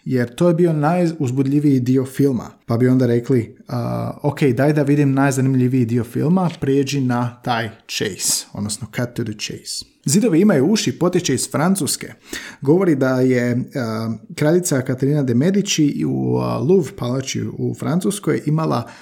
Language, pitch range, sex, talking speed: Croatian, 120-160 Hz, male, 155 wpm